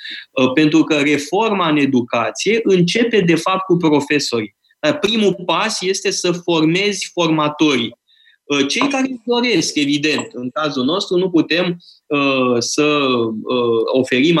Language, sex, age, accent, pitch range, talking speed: Romanian, male, 20-39, native, 150-210 Hz, 115 wpm